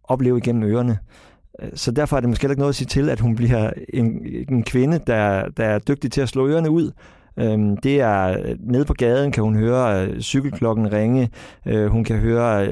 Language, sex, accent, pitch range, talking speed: Danish, male, native, 110-140 Hz, 195 wpm